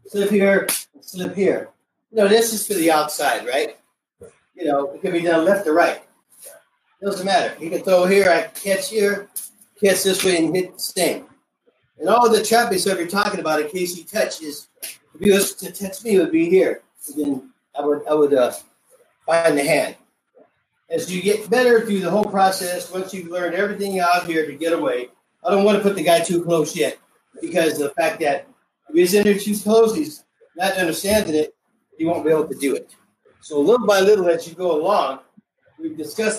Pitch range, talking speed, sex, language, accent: 165-210 Hz, 220 wpm, male, English, American